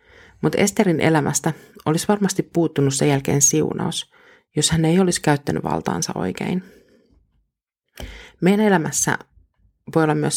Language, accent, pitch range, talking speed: Finnish, native, 145-195 Hz, 120 wpm